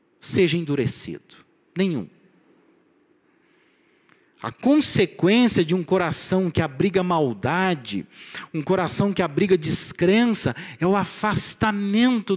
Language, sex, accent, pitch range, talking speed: Portuguese, male, Brazilian, 180-260 Hz, 90 wpm